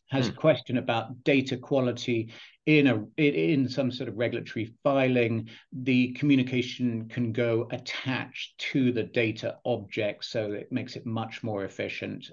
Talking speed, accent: 145 wpm, British